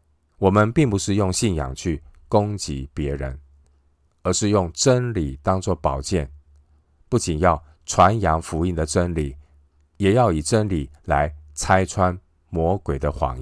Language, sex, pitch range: Chinese, male, 75-95 Hz